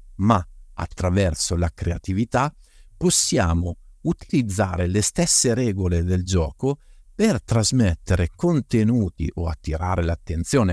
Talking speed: 95 wpm